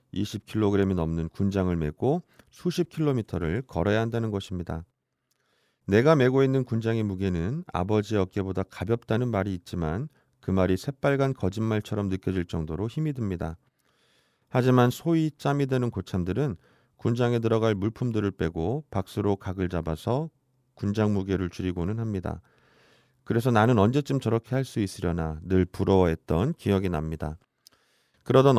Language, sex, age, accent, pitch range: Korean, male, 40-59, native, 95-125 Hz